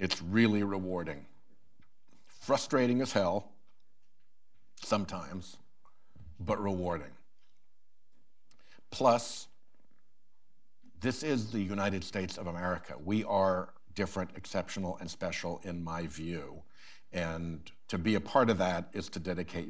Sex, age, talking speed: male, 60-79, 110 wpm